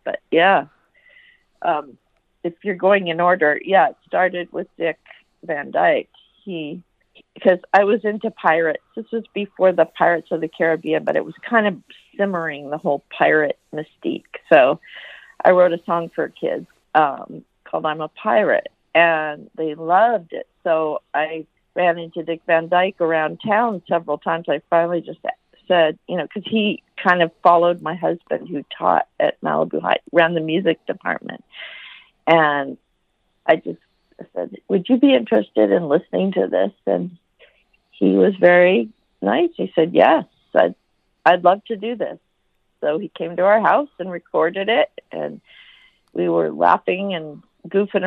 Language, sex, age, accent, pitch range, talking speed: English, female, 50-69, American, 160-200 Hz, 160 wpm